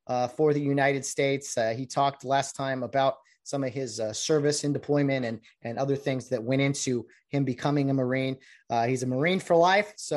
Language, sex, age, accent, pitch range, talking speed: English, male, 30-49, American, 130-160 Hz, 210 wpm